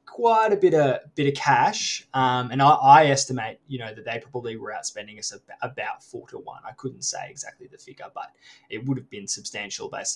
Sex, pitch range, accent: male, 125-155 Hz, Australian